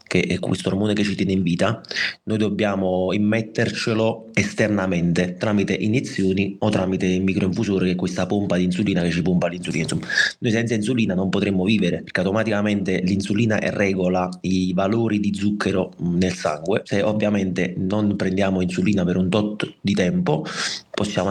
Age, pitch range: 30-49, 95-110 Hz